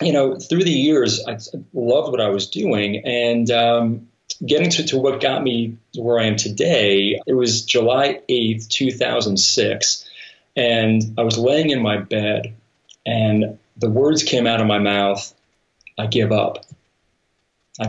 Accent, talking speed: American, 160 wpm